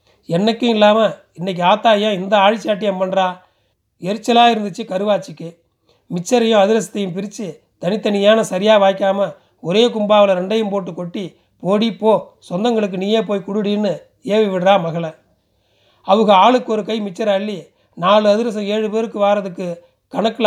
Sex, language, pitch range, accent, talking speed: male, Tamil, 180-215 Hz, native, 125 wpm